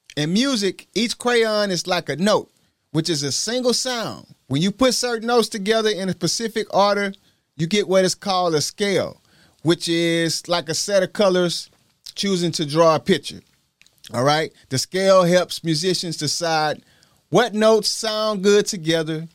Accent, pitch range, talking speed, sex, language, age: American, 160-210 Hz, 165 wpm, male, English, 30-49